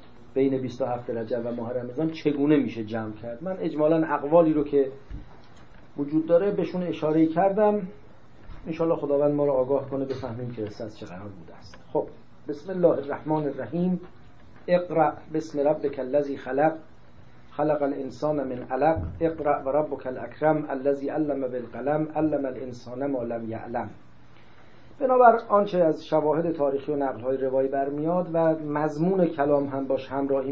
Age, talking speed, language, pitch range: 40-59, 145 wpm, English, 125-160 Hz